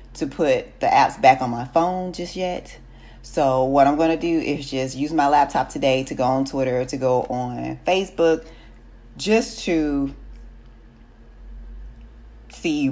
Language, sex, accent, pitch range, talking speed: English, female, American, 120-155 Hz, 155 wpm